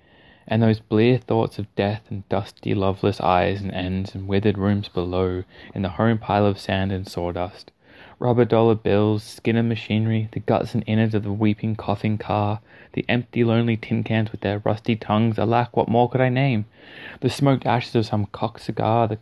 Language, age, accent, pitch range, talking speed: English, 20-39, Australian, 100-115 Hz, 195 wpm